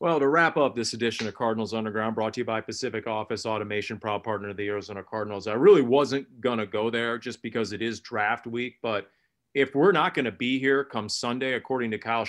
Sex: male